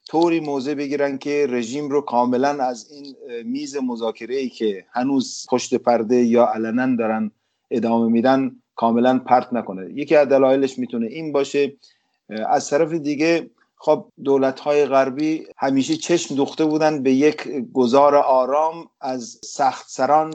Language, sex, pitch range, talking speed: English, male, 120-145 Hz, 135 wpm